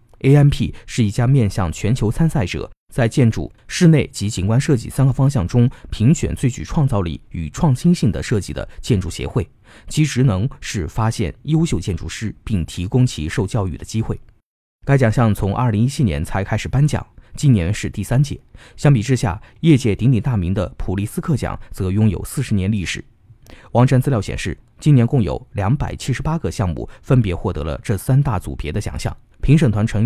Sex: male